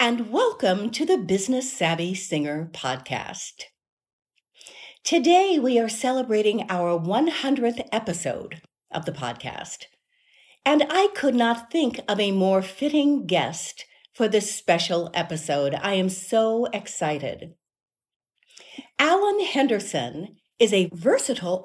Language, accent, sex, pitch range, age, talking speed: English, American, female, 180-255 Hz, 50-69, 115 wpm